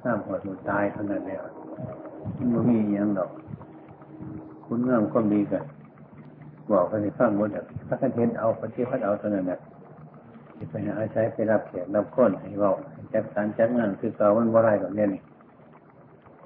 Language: Thai